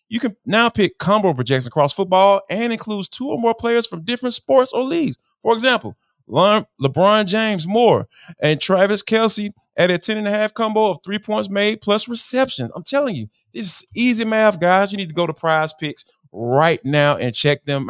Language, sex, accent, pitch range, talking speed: English, male, American, 150-220 Hz, 205 wpm